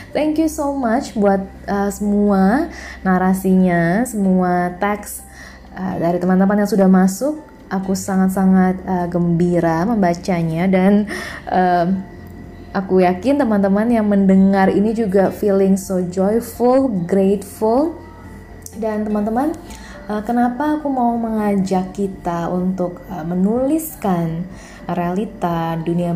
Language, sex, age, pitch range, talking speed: Indonesian, female, 20-39, 185-230 Hz, 110 wpm